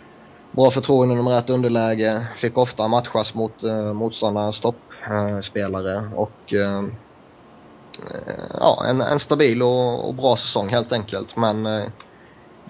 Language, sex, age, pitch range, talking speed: Swedish, male, 20-39, 105-115 Hz, 130 wpm